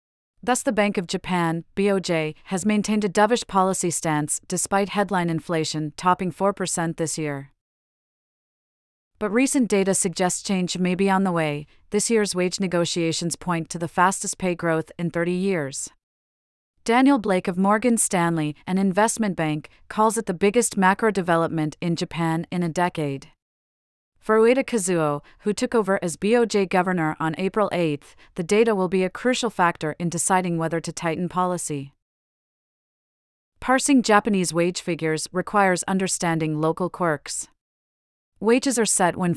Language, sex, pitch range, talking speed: English, female, 165-200 Hz, 150 wpm